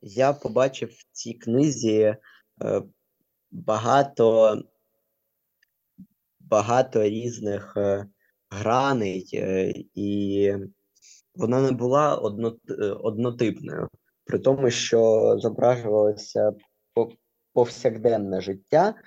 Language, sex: Ukrainian, male